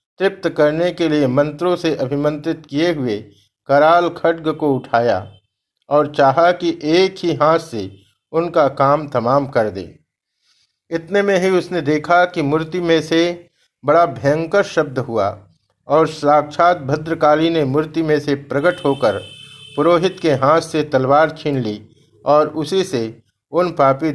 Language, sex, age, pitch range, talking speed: Hindi, male, 50-69, 135-165 Hz, 145 wpm